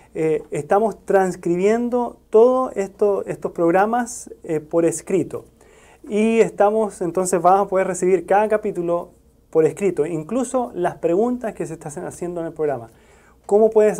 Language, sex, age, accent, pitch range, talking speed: Spanish, male, 30-49, Argentinian, 160-205 Hz, 140 wpm